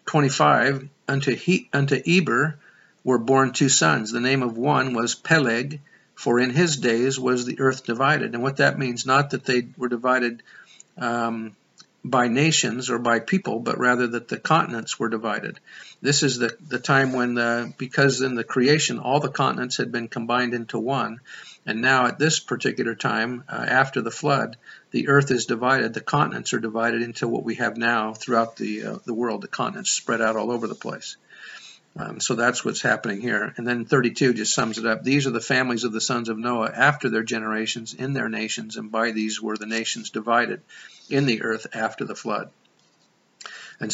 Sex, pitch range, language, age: male, 115-135 Hz, English, 50-69